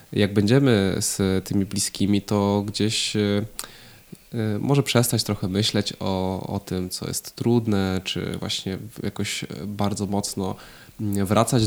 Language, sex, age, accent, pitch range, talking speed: Polish, male, 20-39, native, 95-115 Hz, 120 wpm